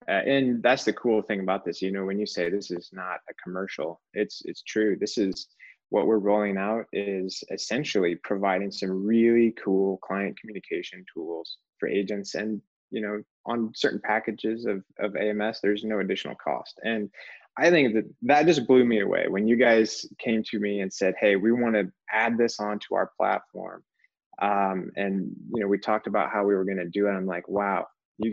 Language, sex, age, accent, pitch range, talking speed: English, male, 20-39, American, 95-115 Hz, 200 wpm